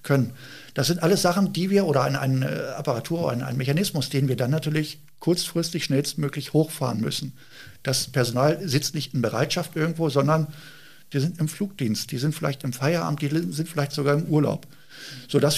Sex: male